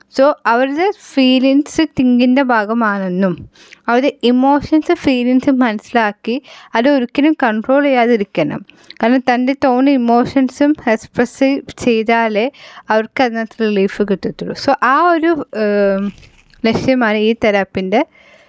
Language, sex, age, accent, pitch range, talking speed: Malayalam, female, 10-29, native, 210-270 Hz, 90 wpm